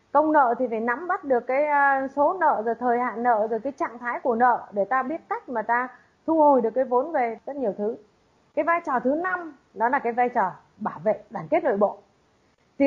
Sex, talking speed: female, 240 wpm